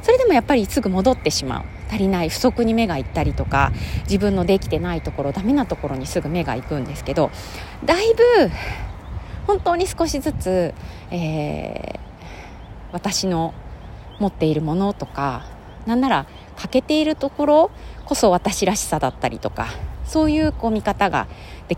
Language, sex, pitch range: Japanese, female, 140-230 Hz